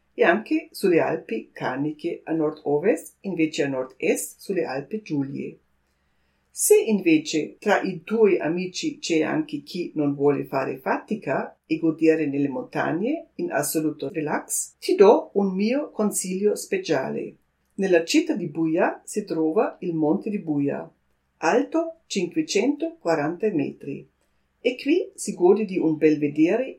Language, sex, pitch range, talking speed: Italian, female, 155-255 Hz, 135 wpm